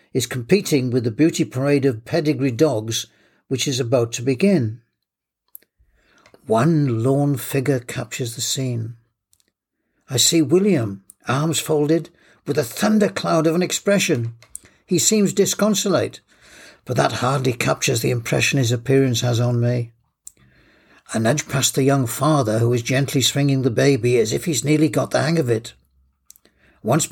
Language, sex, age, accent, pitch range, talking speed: English, male, 60-79, British, 120-155 Hz, 150 wpm